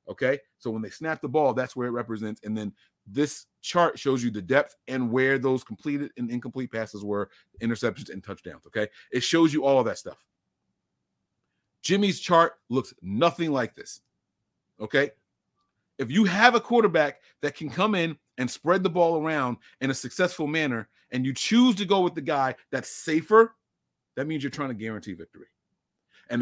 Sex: male